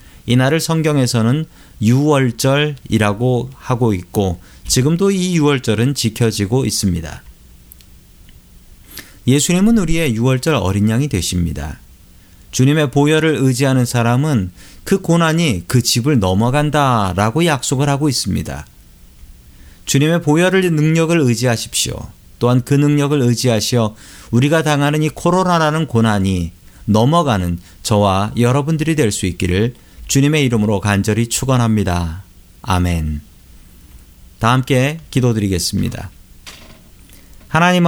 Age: 40-59